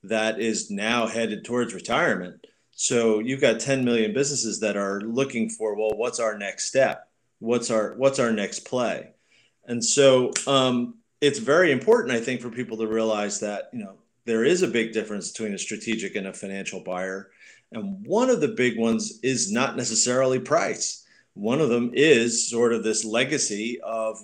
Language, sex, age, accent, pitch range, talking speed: English, male, 30-49, American, 110-135 Hz, 180 wpm